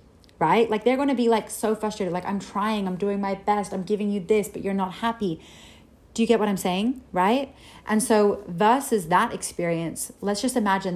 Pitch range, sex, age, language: 175-210 Hz, female, 30-49, English